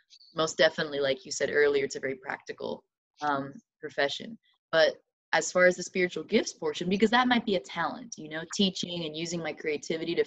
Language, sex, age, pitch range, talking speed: English, female, 20-39, 155-190 Hz, 200 wpm